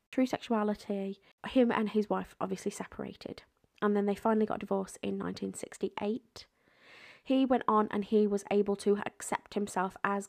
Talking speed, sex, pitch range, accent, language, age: 155 wpm, female, 200-235 Hz, British, English, 20-39